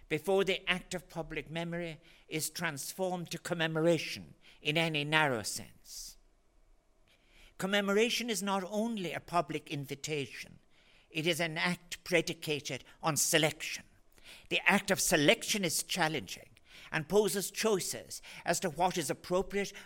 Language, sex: English, male